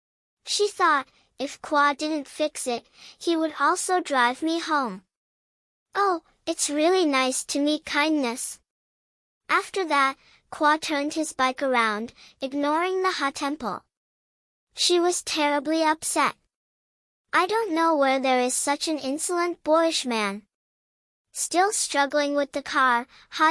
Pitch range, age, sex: 275-330 Hz, 10-29, male